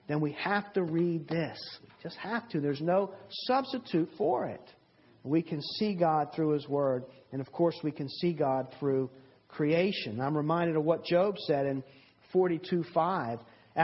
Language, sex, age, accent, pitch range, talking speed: English, male, 50-69, American, 135-195 Hz, 165 wpm